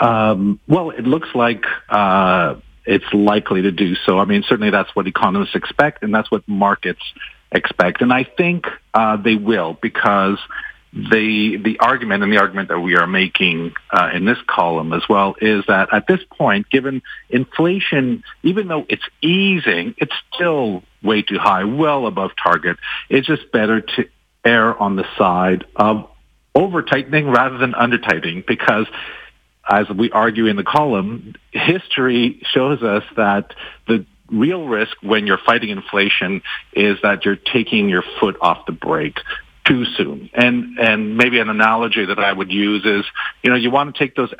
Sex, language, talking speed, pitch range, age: male, English, 180 wpm, 100-130 Hz, 50-69